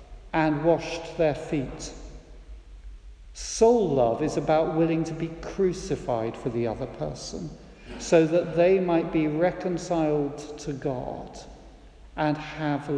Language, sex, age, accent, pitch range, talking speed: English, male, 50-69, British, 130-180 Hz, 120 wpm